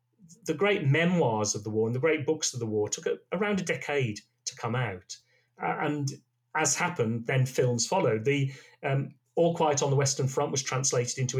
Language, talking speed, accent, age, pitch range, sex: English, 205 wpm, British, 40-59, 120-140 Hz, male